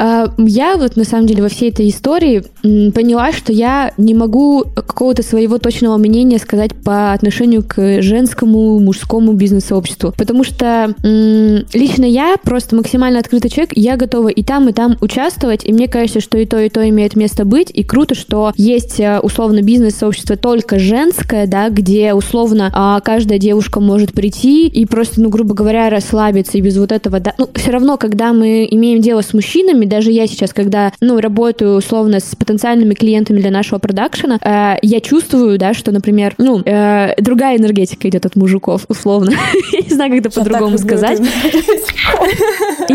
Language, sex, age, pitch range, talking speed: Russian, female, 20-39, 210-250 Hz, 170 wpm